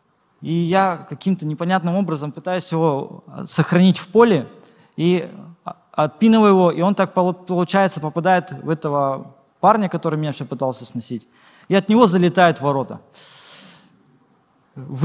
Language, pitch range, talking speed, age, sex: Russian, 135-180 Hz, 130 wpm, 20-39, male